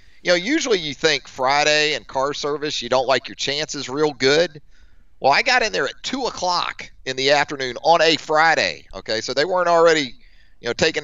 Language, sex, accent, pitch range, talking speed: English, male, American, 125-155 Hz, 205 wpm